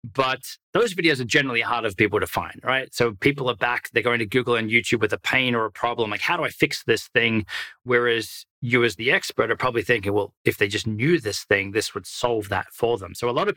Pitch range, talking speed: 105-125 Hz, 260 wpm